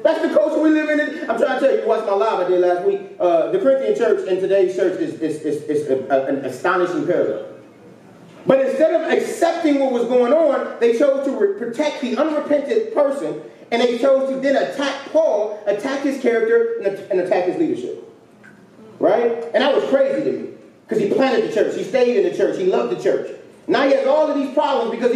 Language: English